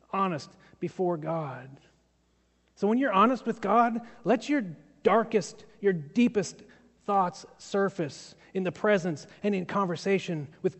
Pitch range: 175-225 Hz